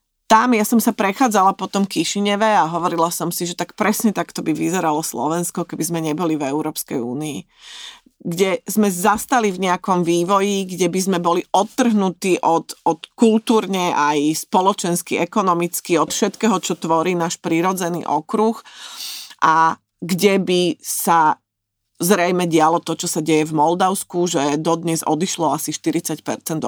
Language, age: Slovak, 30-49